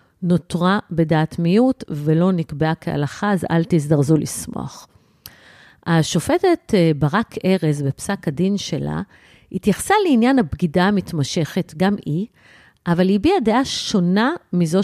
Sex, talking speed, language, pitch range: female, 110 wpm, Hebrew, 165-245 Hz